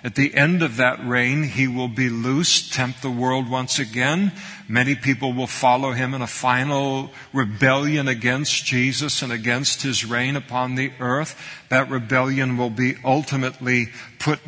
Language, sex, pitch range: English, male, 125-140 Hz